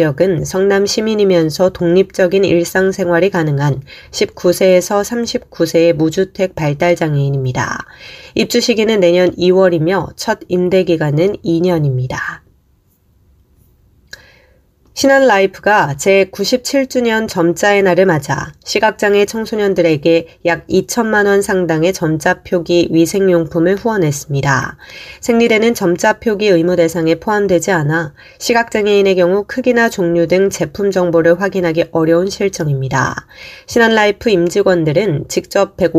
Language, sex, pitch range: Korean, female, 165-205 Hz